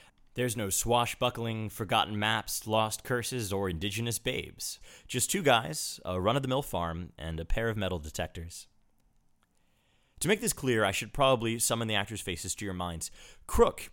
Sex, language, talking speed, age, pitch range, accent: male, English, 160 wpm, 30-49, 95-125 Hz, American